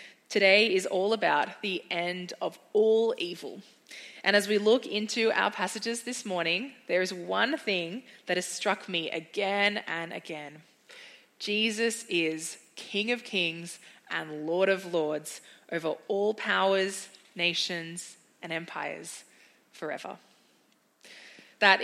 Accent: Australian